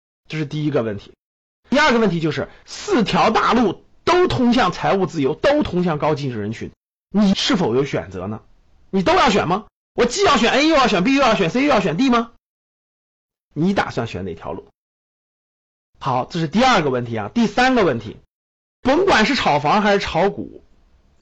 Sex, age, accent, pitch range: male, 30-49, native, 140-230 Hz